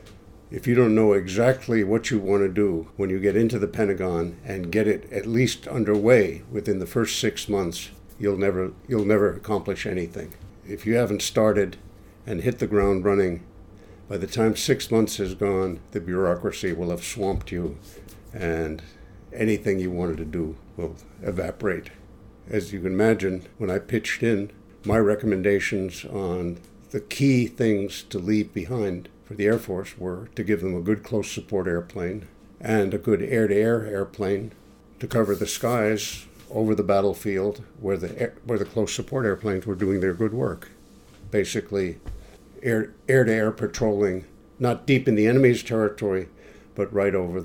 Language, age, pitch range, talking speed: English, 60-79, 95-110 Hz, 160 wpm